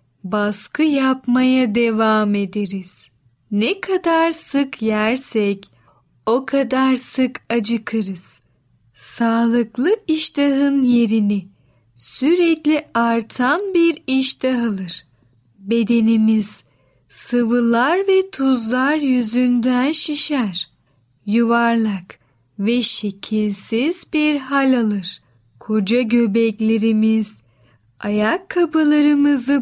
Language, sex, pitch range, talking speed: Turkish, female, 205-265 Hz, 75 wpm